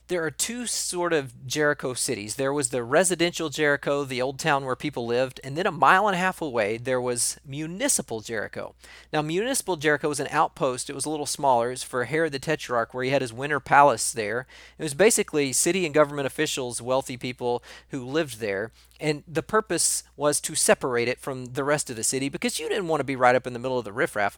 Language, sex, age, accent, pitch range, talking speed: English, male, 40-59, American, 130-170 Hz, 225 wpm